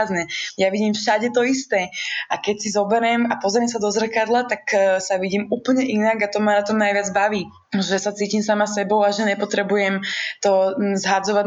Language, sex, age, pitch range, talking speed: Czech, female, 20-39, 195-225 Hz, 190 wpm